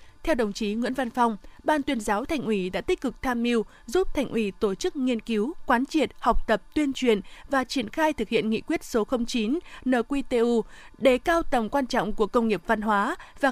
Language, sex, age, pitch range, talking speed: Vietnamese, female, 20-39, 220-280 Hz, 220 wpm